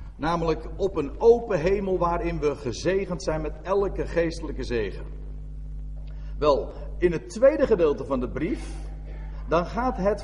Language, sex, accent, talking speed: Dutch, male, Dutch, 140 wpm